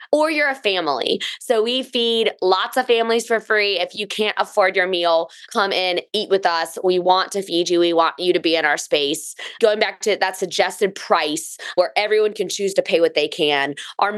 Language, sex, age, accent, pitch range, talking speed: English, female, 20-39, American, 180-225 Hz, 220 wpm